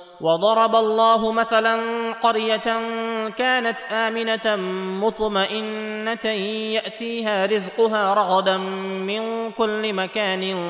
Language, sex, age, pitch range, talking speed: Arabic, male, 20-39, 190-225 Hz, 75 wpm